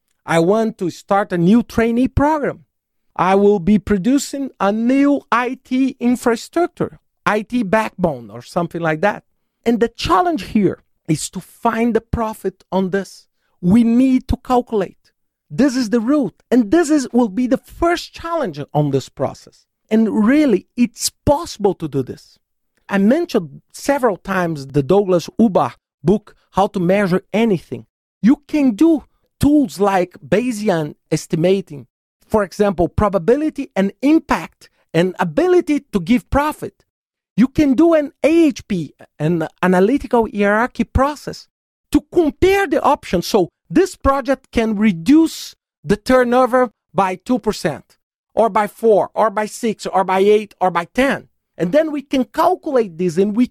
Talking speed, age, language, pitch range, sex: 145 wpm, 50-69, English, 190-270 Hz, male